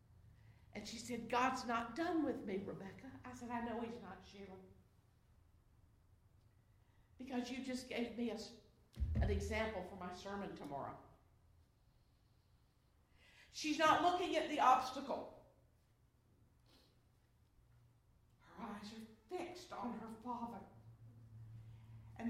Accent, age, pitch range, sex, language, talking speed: American, 50-69, 165-265 Hz, female, English, 110 wpm